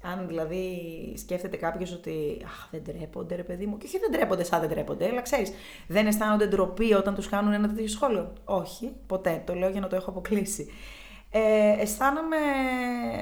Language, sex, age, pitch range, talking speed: Greek, female, 20-39, 185-230 Hz, 175 wpm